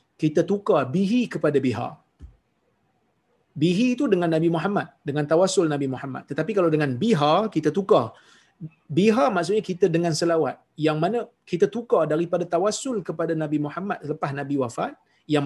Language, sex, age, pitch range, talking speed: Malayalam, male, 30-49, 140-185 Hz, 150 wpm